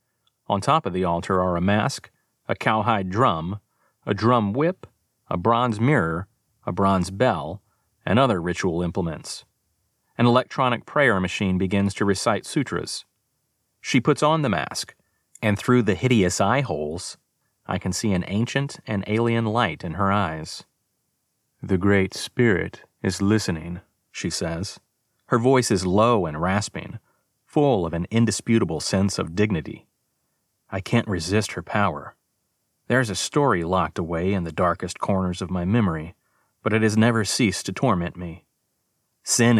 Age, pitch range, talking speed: 30-49, 90-115 Hz, 150 wpm